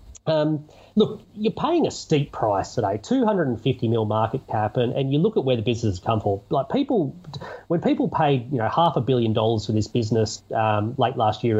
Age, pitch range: 30-49, 115-145 Hz